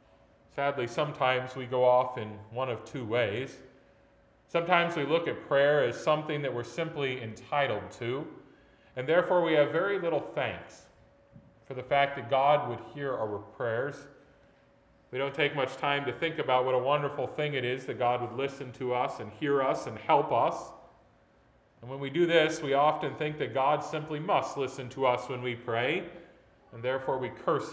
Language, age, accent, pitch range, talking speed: English, 40-59, American, 120-155 Hz, 185 wpm